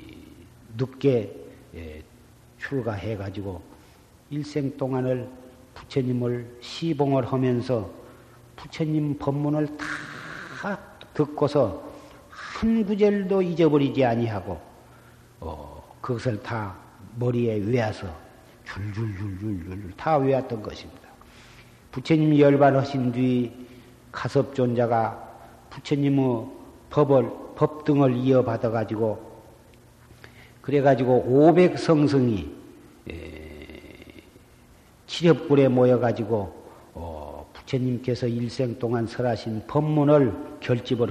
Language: Korean